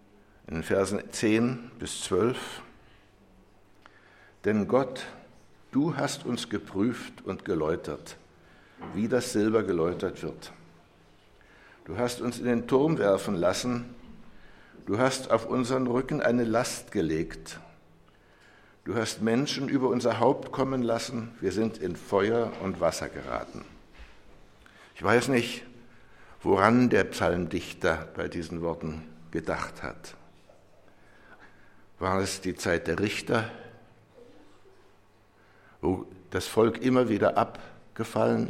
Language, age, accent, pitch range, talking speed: English, 60-79, German, 100-125 Hz, 110 wpm